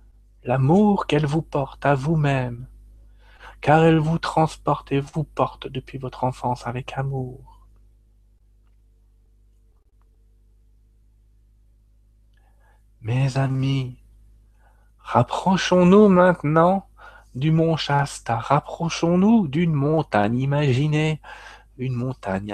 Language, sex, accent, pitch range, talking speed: French, male, French, 110-155 Hz, 85 wpm